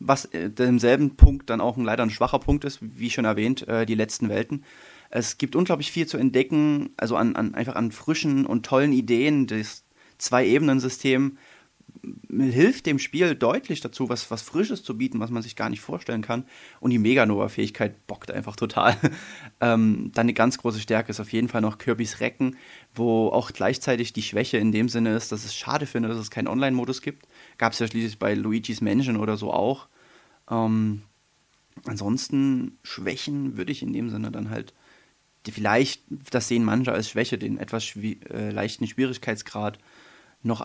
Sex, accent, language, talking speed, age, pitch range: male, German, German, 180 wpm, 30-49, 110-130 Hz